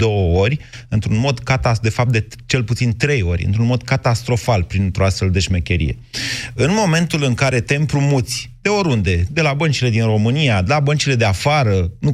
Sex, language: male, Romanian